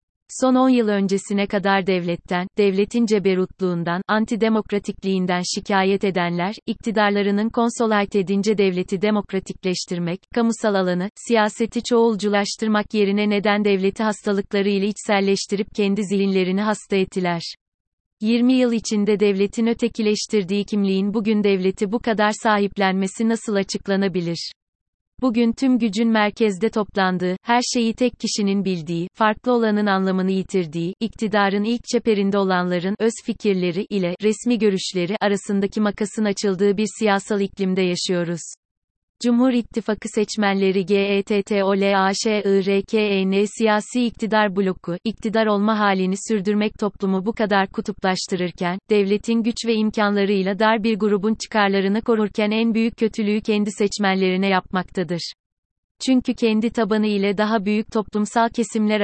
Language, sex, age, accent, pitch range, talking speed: Turkish, female, 30-49, native, 195-220 Hz, 120 wpm